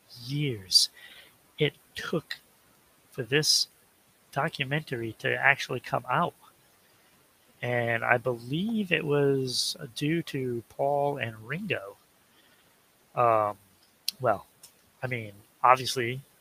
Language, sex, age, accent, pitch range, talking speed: English, male, 30-49, American, 120-150 Hz, 90 wpm